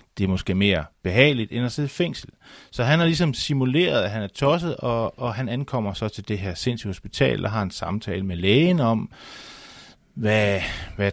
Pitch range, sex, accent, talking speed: 90-120 Hz, male, native, 205 wpm